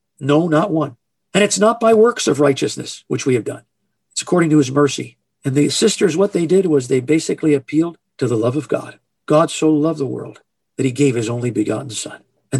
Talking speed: 225 wpm